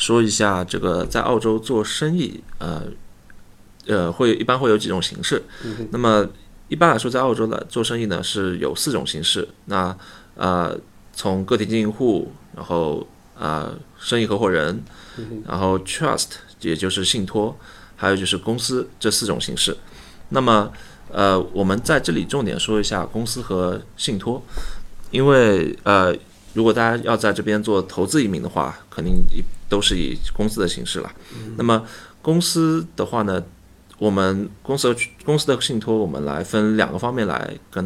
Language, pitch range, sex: Chinese, 95-115 Hz, male